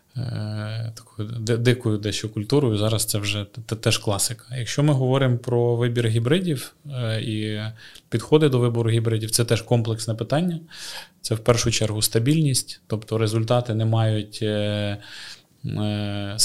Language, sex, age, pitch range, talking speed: Ukrainian, male, 20-39, 110-125 Hz, 125 wpm